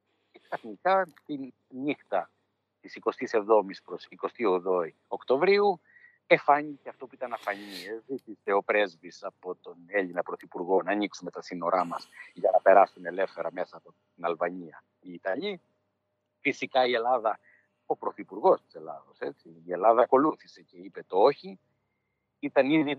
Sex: male